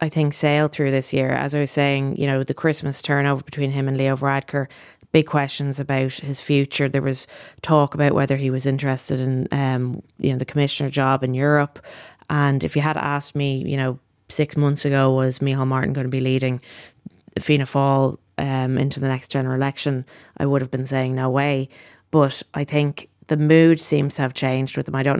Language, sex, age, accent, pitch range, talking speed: English, female, 20-39, Irish, 135-150 Hz, 210 wpm